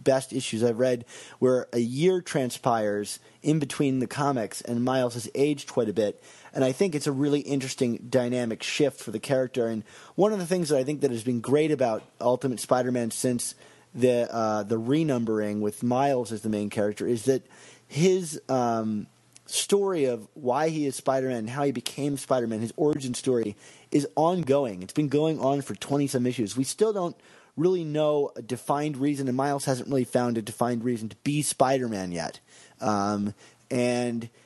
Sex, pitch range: male, 120-150 Hz